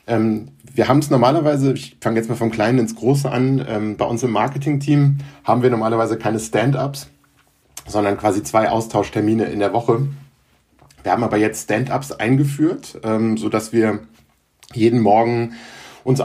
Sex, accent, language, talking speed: male, German, German, 160 wpm